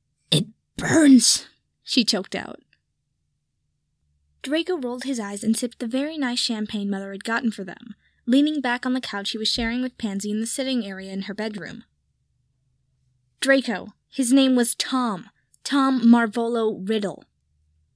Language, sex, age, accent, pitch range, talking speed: English, female, 10-29, American, 190-255 Hz, 145 wpm